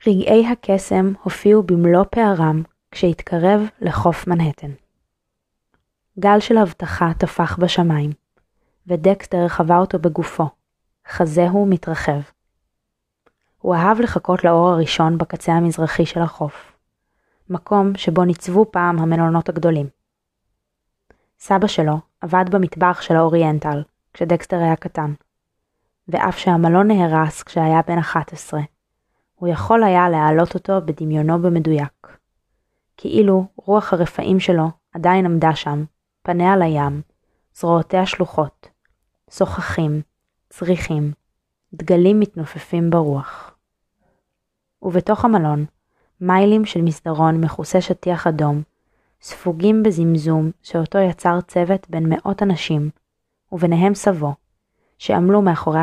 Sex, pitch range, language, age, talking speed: female, 160-185 Hz, Hebrew, 20-39, 100 wpm